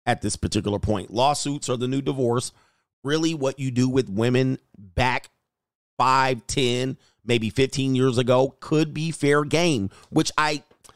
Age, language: 40-59, English